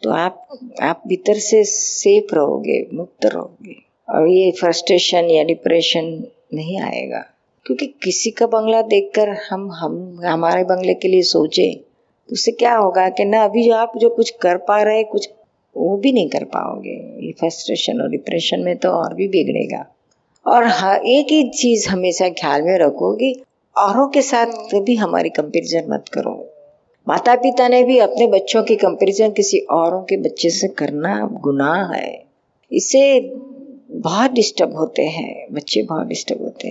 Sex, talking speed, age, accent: female, 165 wpm, 50-69, native